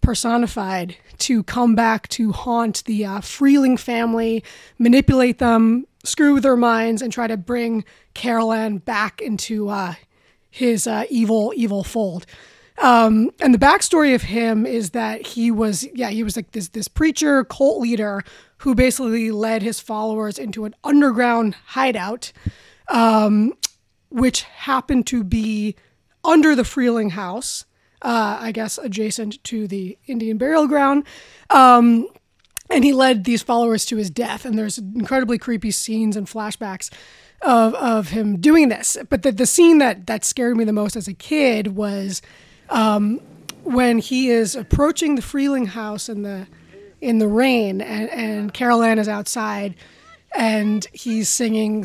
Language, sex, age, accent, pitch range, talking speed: English, female, 20-39, American, 215-250 Hz, 150 wpm